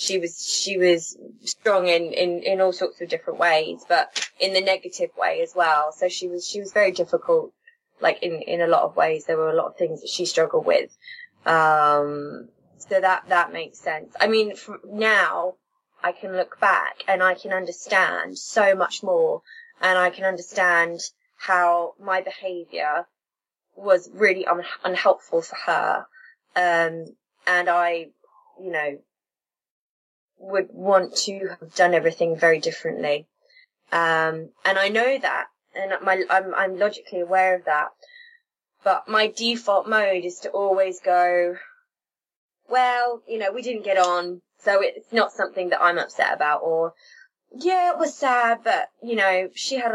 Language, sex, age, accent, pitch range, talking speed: English, female, 20-39, British, 175-245 Hz, 165 wpm